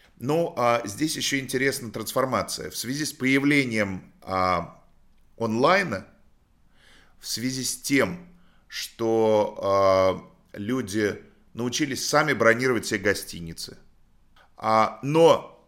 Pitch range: 95-120 Hz